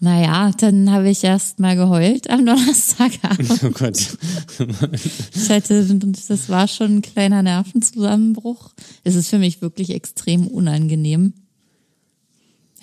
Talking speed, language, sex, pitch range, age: 115 wpm, German, female, 165-200 Hz, 20-39